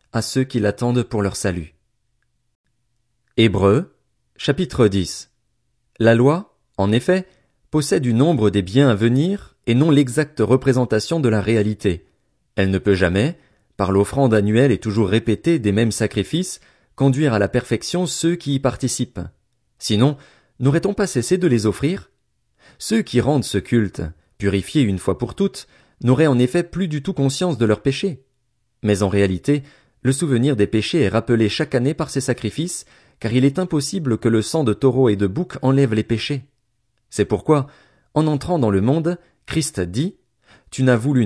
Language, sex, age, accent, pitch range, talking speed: French, male, 40-59, French, 110-145 Hz, 170 wpm